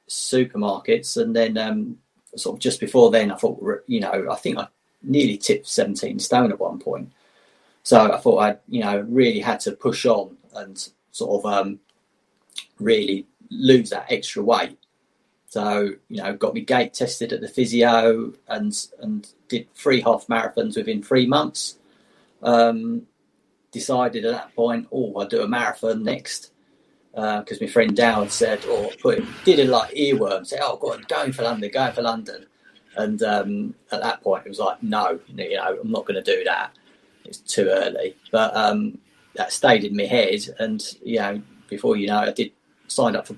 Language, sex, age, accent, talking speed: English, male, 30-49, British, 185 wpm